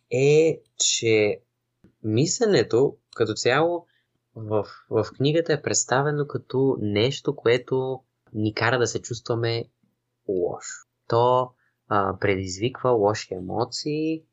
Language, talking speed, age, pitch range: Bulgarian, 100 wpm, 20-39, 100-135 Hz